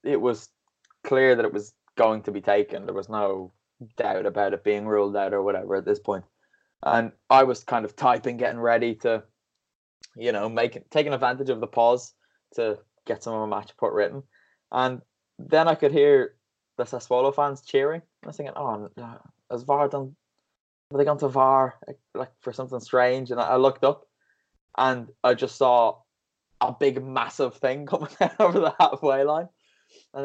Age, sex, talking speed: 20-39, male, 185 wpm